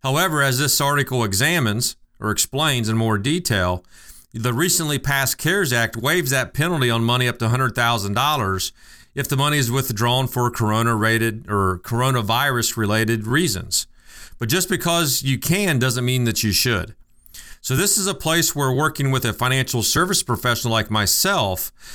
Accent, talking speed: American, 160 wpm